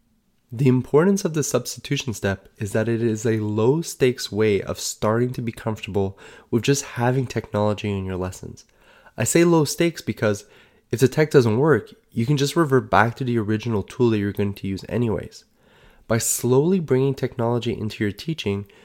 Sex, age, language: male, 20-39, English